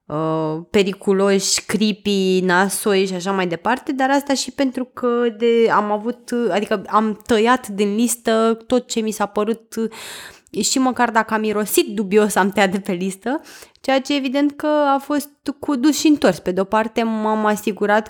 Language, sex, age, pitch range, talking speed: Romanian, female, 20-39, 195-240 Hz, 170 wpm